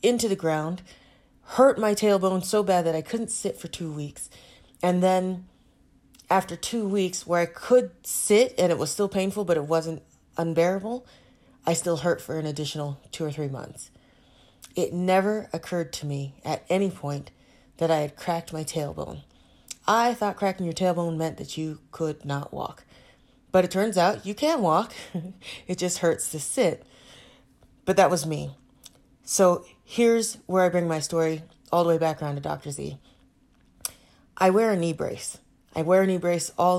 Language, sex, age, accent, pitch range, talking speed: English, female, 30-49, American, 155-190 Hz, 180 wpm